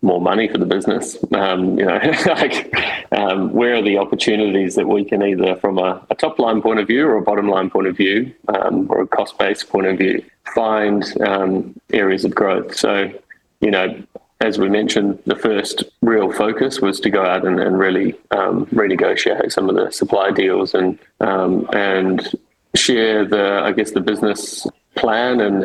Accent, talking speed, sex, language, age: Australian, 185 wpm, male, English, 20-39